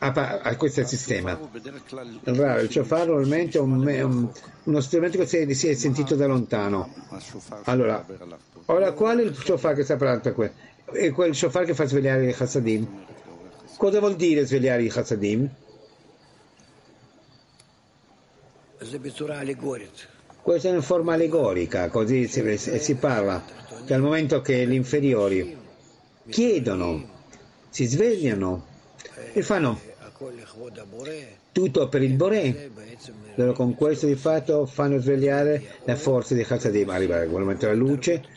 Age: 50-69